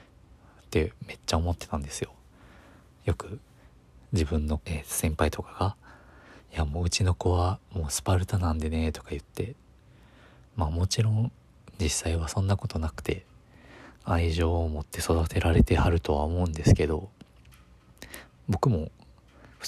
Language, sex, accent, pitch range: Japanese, male, native, 80-95 Hz